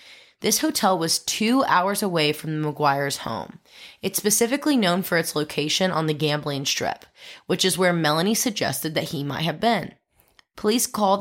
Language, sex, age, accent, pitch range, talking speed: English, female, 20-39, American, 150-200 Hz, 170 wpm